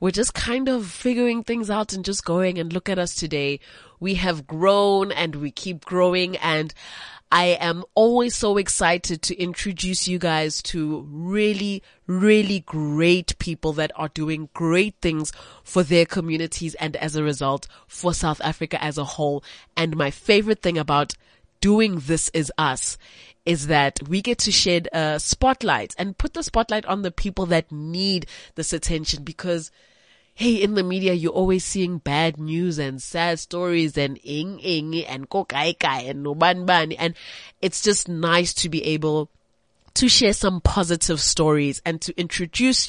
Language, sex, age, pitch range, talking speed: English, female, 20-39, 155-200 Hz, 170 wpm